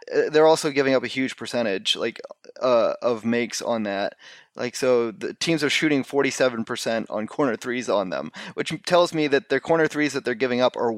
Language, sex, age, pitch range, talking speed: English, male, 20-39, 120-145 Hz, 200 wpm